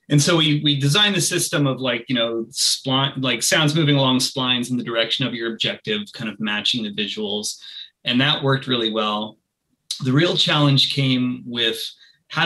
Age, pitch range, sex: 30-49, 110-140 Hz, male